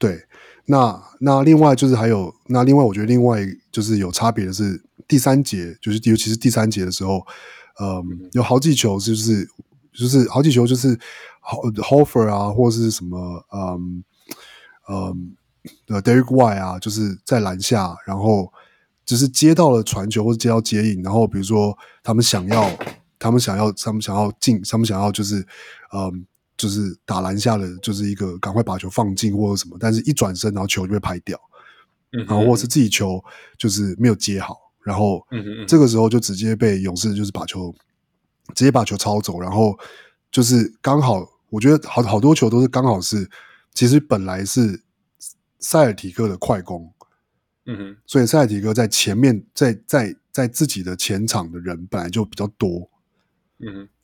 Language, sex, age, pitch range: Chinese, male, 20-39, 100-120 Hz